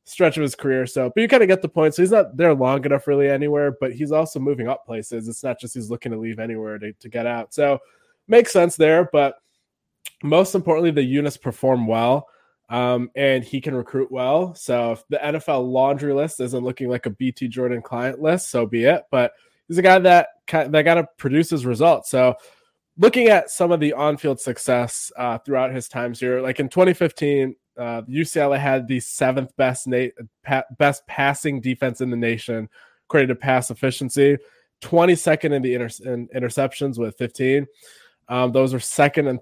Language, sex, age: English, male, 20-39